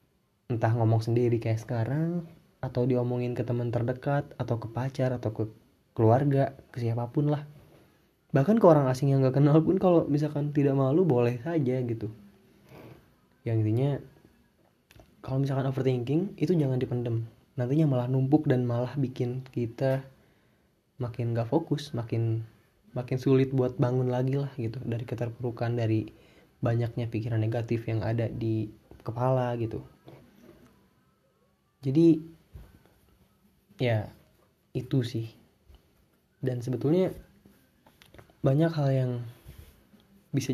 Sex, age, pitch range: male, 20-39, 115-135 Hz